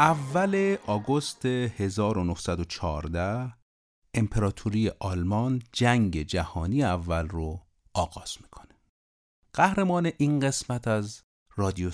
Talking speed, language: 80 wpm, Persian